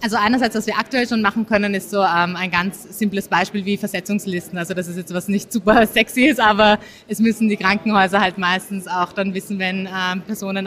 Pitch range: 185-205 Hz